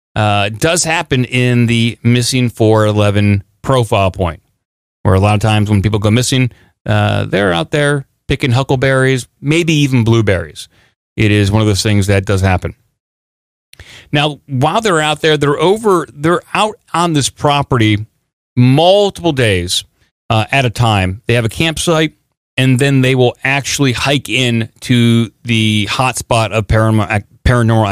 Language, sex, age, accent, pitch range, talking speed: English, male, 30-49, American, 110-135 Hz, 155 wpm